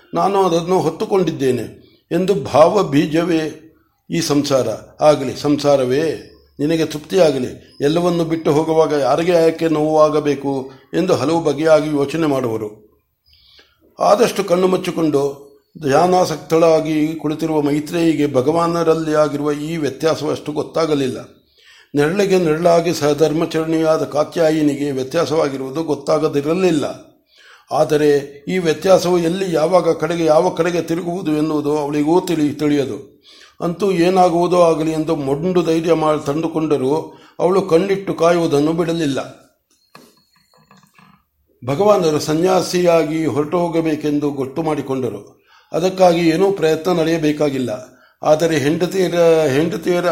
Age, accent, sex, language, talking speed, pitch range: 60-79, native, male, Kannada, 90 wpm, 145-170 Hz